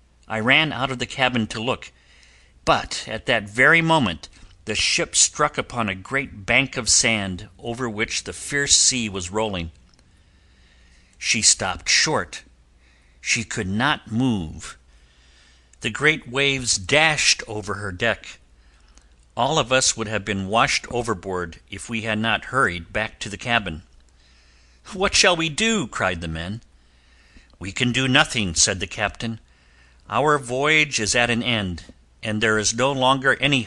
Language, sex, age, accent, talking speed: English, male, 50-69, American, 155 wpm